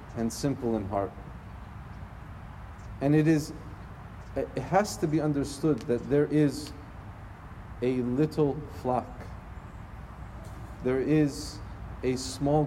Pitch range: 100-135 Hz